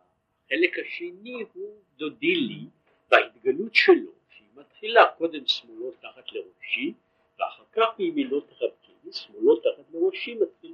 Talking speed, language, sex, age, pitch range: 125 wpm, Hebrew, male, 50-69, 330-410 Hz